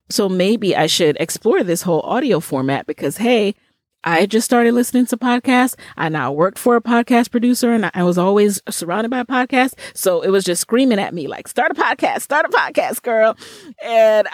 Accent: American